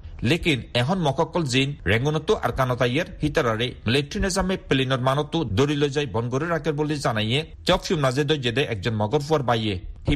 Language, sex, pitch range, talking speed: Bengali, male, 115-150 Hz, 90 wpm